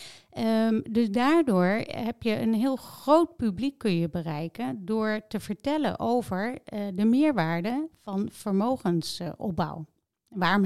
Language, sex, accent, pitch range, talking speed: Dutch, female, Dutch, 180-235 Hz, 125 wpm